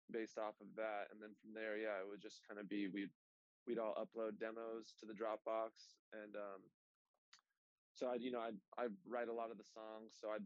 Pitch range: 105-115 Hz